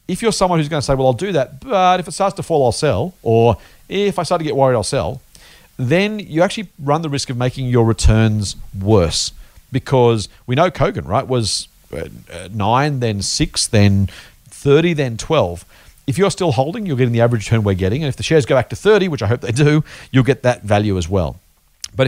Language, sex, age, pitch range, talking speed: English, male, 40-59, 115-155 Hz, 225 wpm